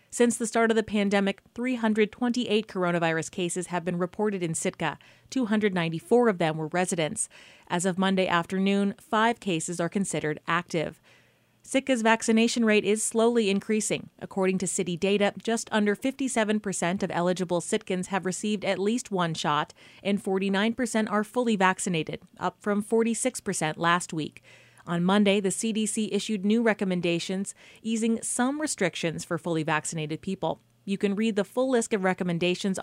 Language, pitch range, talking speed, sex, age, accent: English, 180-225 Hz, 150 wpm, female, 30-49, American